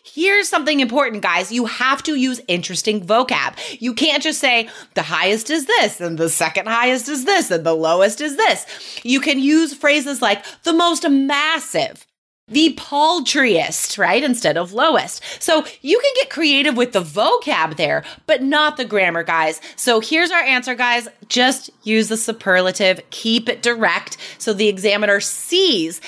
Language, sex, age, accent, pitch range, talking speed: English, female, 30-49, American, 205-295 Hz, 170 wpm